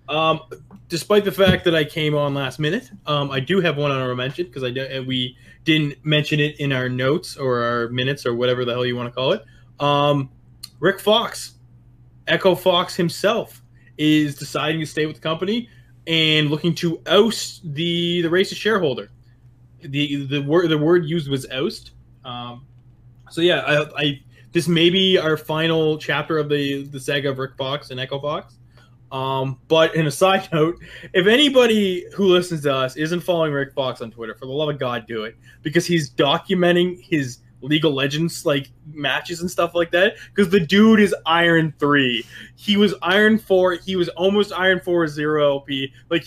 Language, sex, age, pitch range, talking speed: English, male, 20-39, 130-170 Hz, 190 wpm